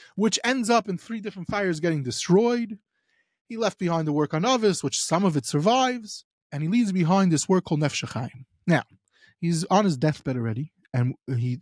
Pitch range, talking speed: 165-245 Hz, 190 wpm